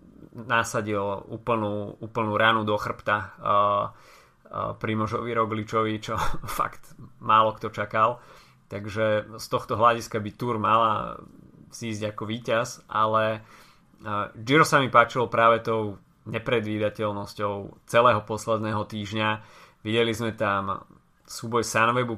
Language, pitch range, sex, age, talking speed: Slovak, 105-115 Hz, male, 30-49, 115 wpm